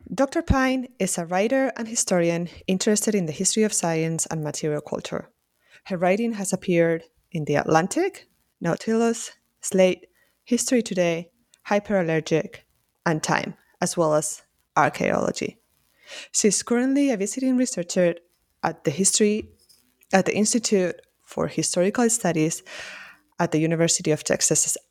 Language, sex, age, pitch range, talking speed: English, female, 20-39, 165-220 Hz, 130 wpm